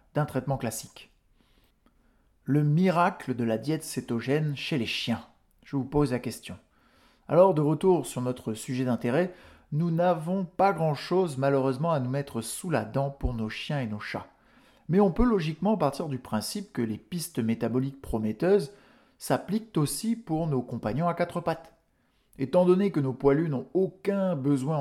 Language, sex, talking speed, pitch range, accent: French, male, 170 wpm, 125-175 Hz, French